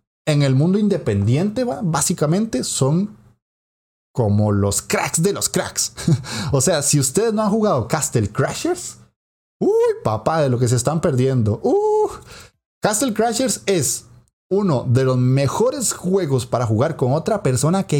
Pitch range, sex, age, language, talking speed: 120-185 Hz, male, 30-49, Spanish, 145 wpm